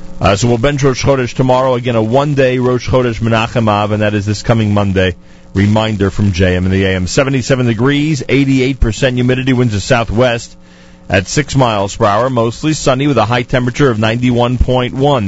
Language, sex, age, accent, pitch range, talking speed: English, male, 40-59, American, 90-130 Hz, 180 wpm